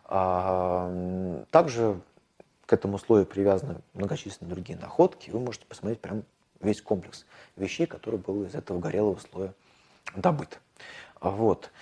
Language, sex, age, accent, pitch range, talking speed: Russian, male, 30-49, native, 95-120 Hz, 110 wpm